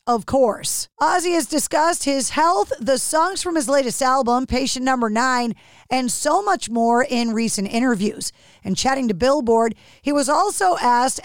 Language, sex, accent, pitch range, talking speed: English, female, American, 235-295 Hz, 165 wpm